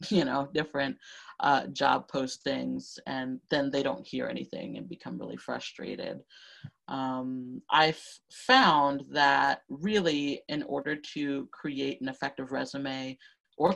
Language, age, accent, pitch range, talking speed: English, 30-49, American, 135-180 Hz, 125 wpm